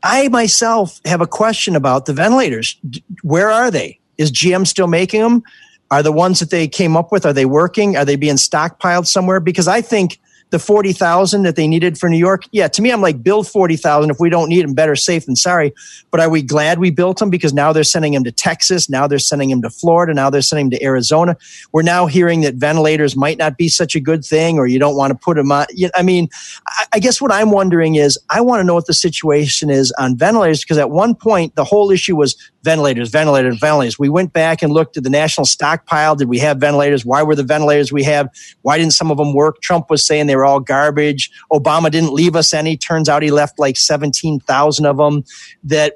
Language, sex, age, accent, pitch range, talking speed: English, male, 40-59, American, 145-180 Hz, 235 wpm